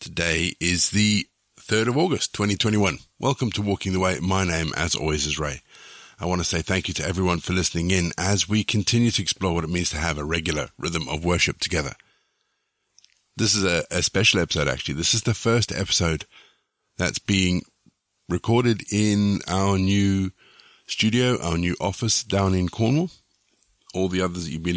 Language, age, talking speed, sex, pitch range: English, 50-69, 185 wpm, male, 80-105 Hz